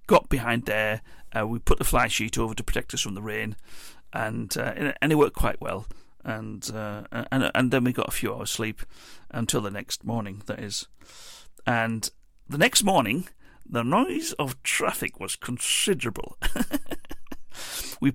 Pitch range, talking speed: 115-140 Hz, 160 wpm